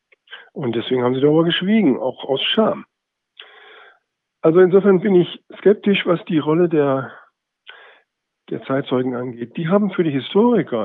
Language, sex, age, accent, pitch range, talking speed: German, male, 50-69, German, 130-170 Hz, 145 wpm